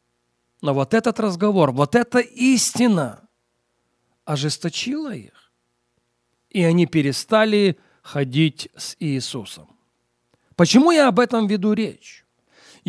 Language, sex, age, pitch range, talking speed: Russian, male, 40-59, 145-210 Hz, 100 wpm